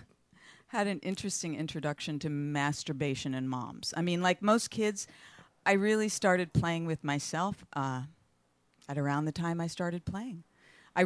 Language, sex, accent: English, female, American